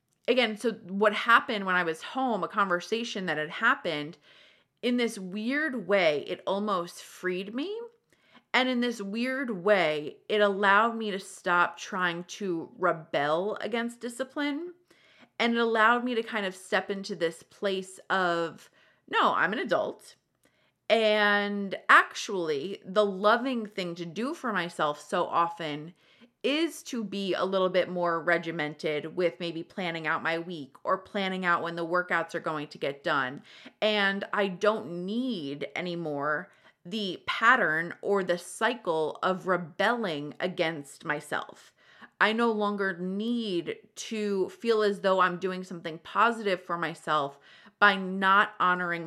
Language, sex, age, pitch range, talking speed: English, female, 30-49, 175-220 Hz, 145 wpm